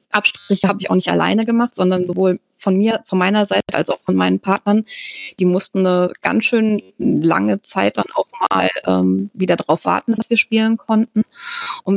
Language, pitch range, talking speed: German, 180-220 Hz, 190 wpm